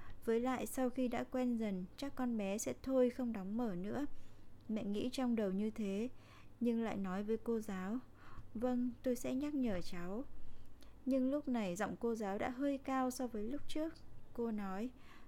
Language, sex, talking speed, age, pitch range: Vietnamese, female, 195 wpm, 20-39, 195-255 Hz